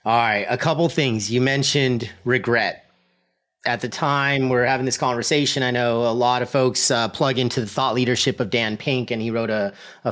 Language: English